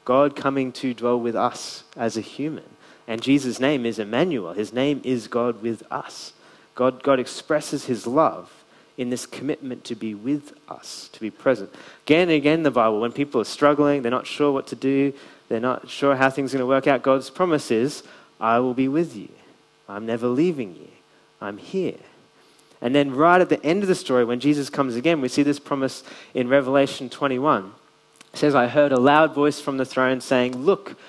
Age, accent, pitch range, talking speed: 20-39, Australian, 120-145 Hz, 205 wpm